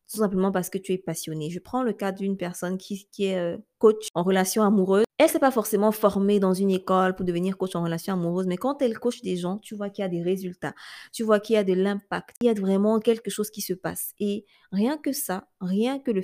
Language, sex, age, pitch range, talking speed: French, female, 20-39, 185-215 Hz, 260 wpm